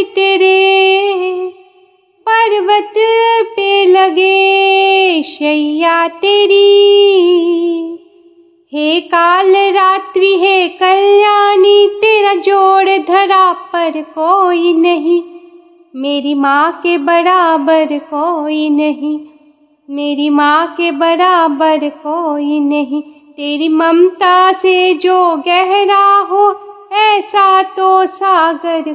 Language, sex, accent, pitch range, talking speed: Hindi, female, native, 295-375 Hz, 80 wpm